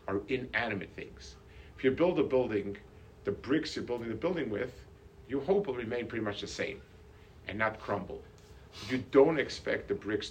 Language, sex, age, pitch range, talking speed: English, male, 50-69, 100-135 Hz, 175 wpm